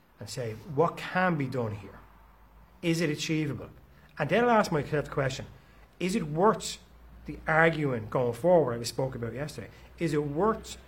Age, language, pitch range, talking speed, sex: 30-49, English, 115-165 Hz, 180 wpm, male